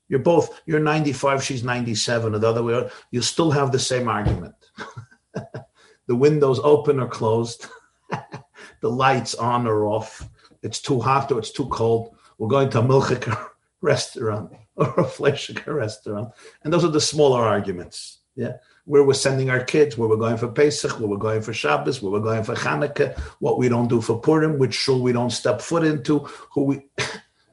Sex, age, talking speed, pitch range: male, 50-69, 185 wpm, 120-150 Hz